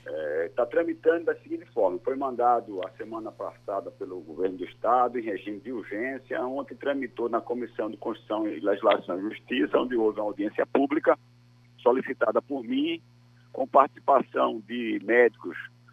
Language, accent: Portuguese, Brazilian